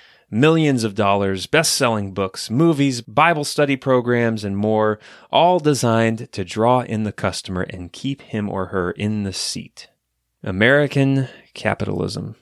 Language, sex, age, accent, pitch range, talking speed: English, male, 30-49, American, 95-130 Hz, 140 wpm